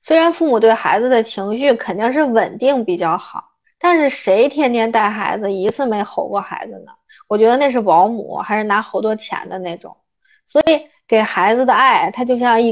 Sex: female